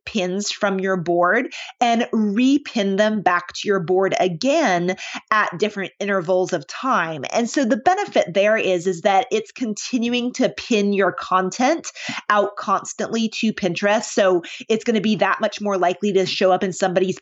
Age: 30-49